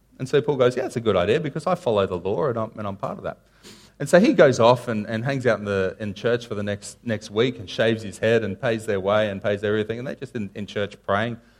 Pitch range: 110-155 Hz